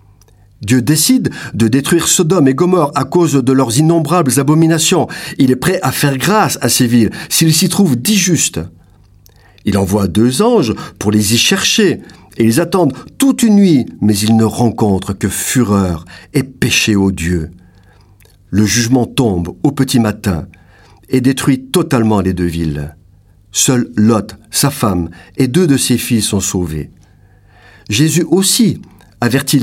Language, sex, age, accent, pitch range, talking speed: French, male, 50-69, French, 100-150 Hz, 150 wpm